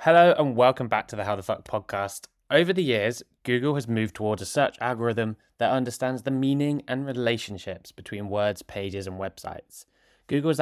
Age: 20-39